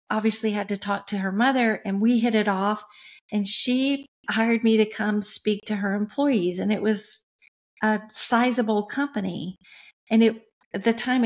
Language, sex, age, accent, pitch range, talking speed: English, female, 50-69, American, 205-235 Hz, 175 wpm